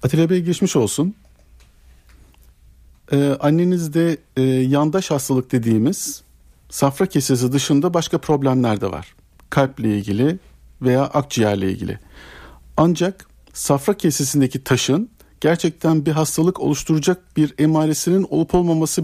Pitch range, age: 130-165 Hz, 50-69